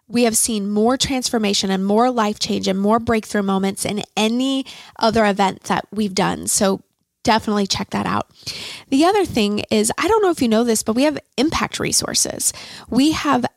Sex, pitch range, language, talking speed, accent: female, 205-245 Hz, English, 190 wpm, American